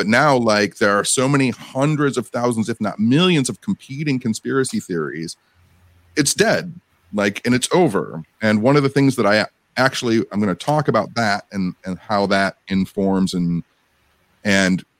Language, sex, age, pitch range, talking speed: English, male, 30-49, 100-130 Hz, 175 wpm